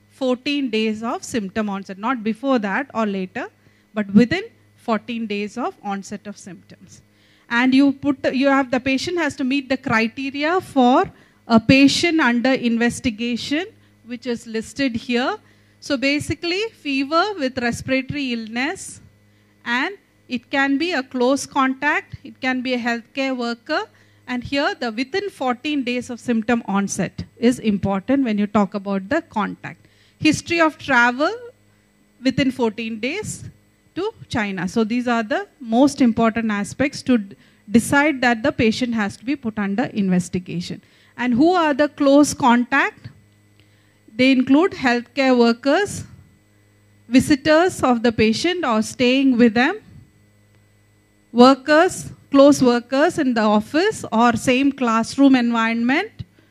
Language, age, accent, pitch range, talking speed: Indonesian, 40-59, Indian, 220-280 Hz, 140 wpm